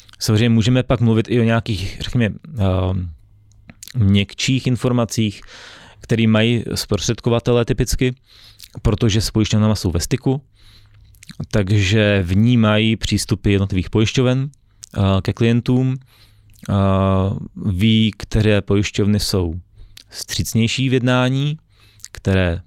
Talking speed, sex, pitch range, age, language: 95 wpm, male, 95-115 Hz, 20-39, Czech